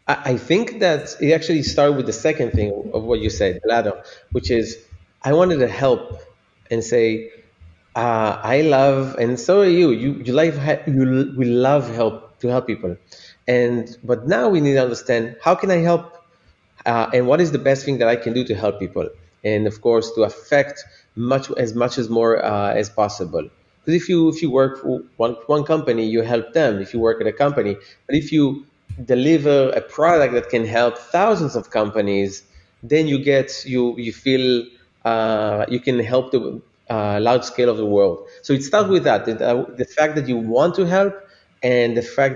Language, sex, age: English, male, 30-49